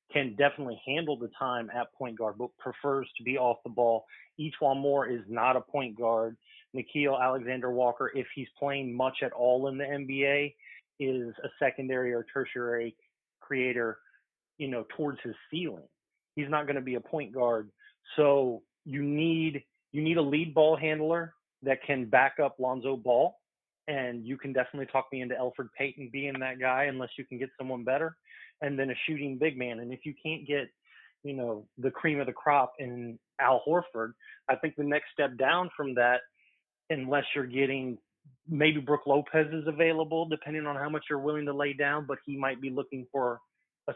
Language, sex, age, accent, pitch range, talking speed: English, male, 30-49, American, 125-145 Hz, 190 wpm